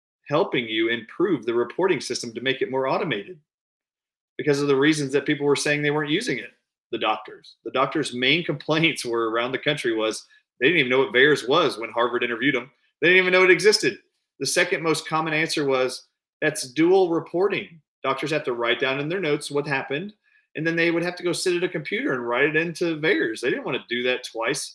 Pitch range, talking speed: 125-170 Hz, 225 wpm